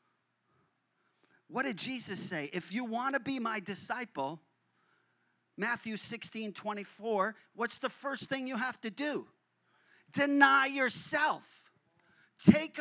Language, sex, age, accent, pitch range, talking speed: English, male, 40-59, American, 190-245 Hz, 115 wpm